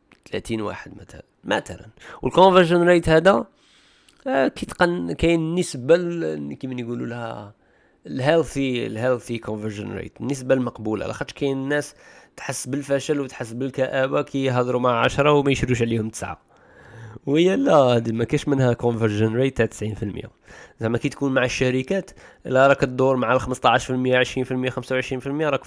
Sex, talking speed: male, 130 wpm